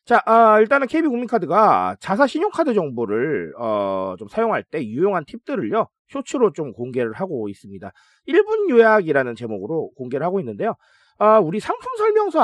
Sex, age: male, 30-49